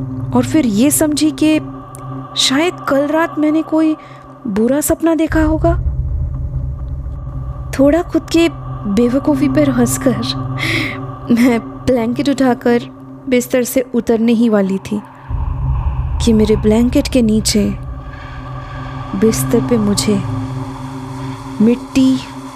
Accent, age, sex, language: native, 20-39, female, Hindi